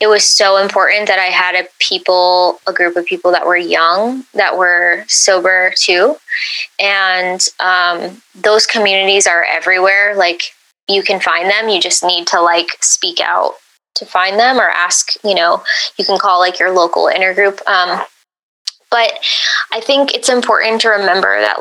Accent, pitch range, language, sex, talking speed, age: American, 185-220 Hz, English, female, 170 wpm, 20-39